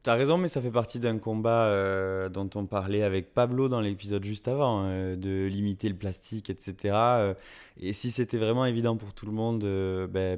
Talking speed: 215 wpm